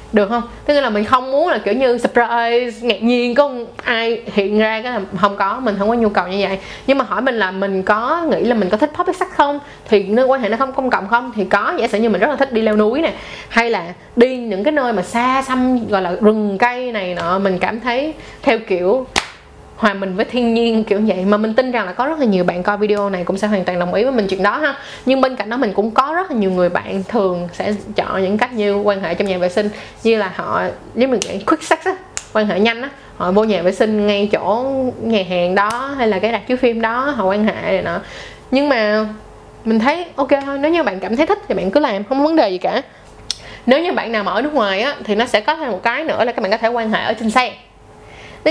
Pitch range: 205-260 Hz